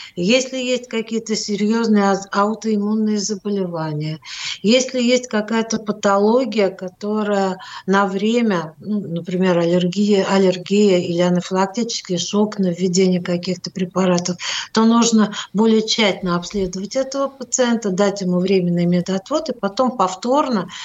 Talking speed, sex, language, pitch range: 110 wpm, female, Russian, 180-220 Hz